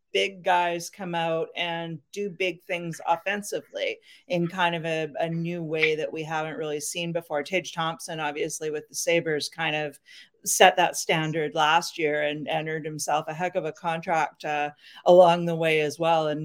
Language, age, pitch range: English, 40-59, 155-180 Hz